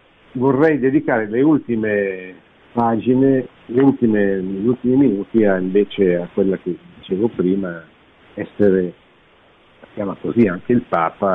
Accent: native